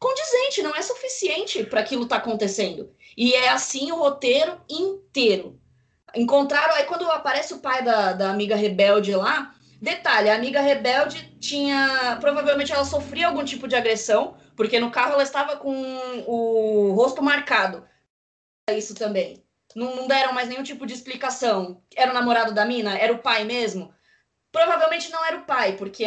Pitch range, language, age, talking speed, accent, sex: 225-295 Hz, Portuguese, 20-39, 165 wpm, Brazilian, female